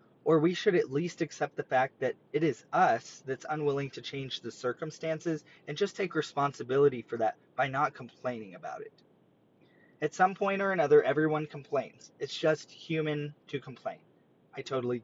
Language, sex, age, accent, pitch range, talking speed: English, male, 20-39, American, 130-165 Hz, 170 wpm